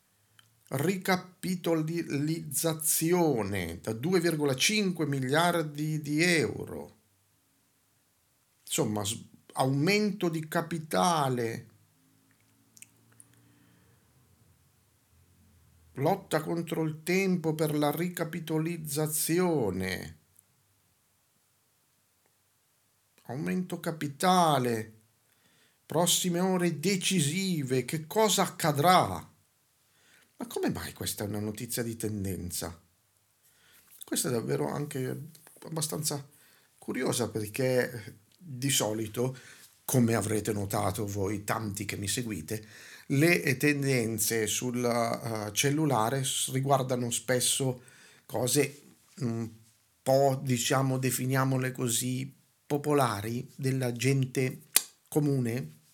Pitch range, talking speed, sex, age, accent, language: 110-155 Hz, 70 wpm, male, 50-69, native, Italian